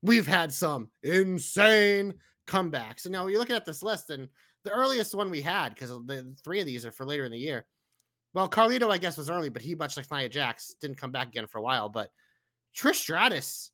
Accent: American